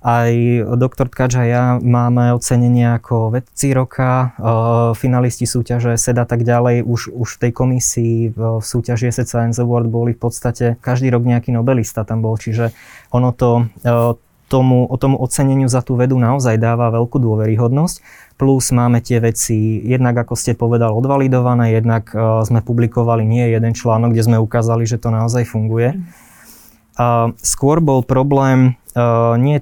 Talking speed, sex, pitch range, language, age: 150 wpm, male, 115-130 Hz, Slovak, 20-39